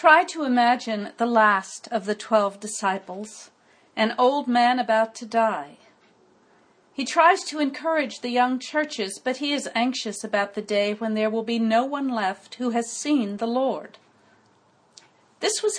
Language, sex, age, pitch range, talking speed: English, female, 50-69, 220-265 Hz, 165 wpm